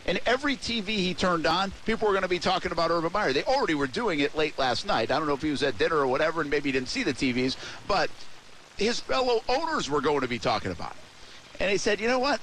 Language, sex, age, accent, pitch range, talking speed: English, male, 50-69, American, 140-195 Hz, 275 wpm